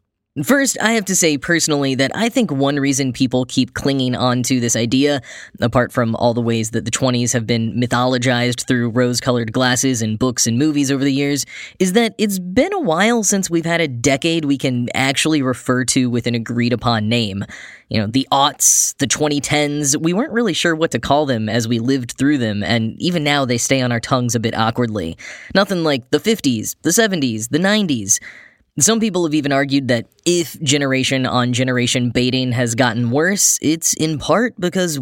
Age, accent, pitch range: 10-29, American, 125-155 Hz